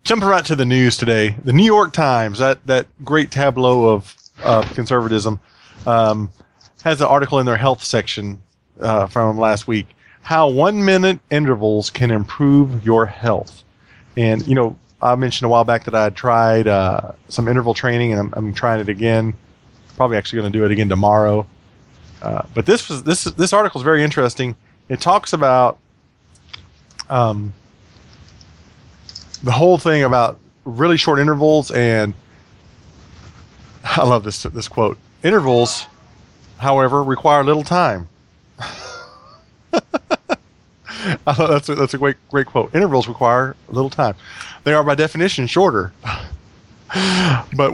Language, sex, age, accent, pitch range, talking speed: English, male, 30-49, American, 110-145 Hz, 145 wpm